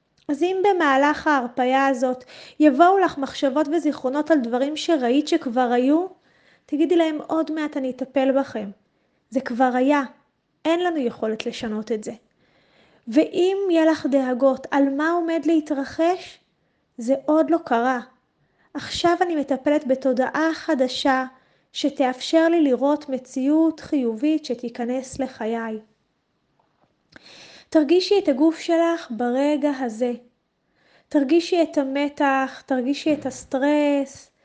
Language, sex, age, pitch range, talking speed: Hebrew, female, 20-39, 255-315 Hz, 115 wpm